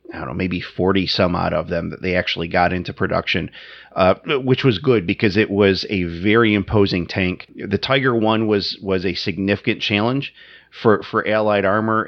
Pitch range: 95-110 Hz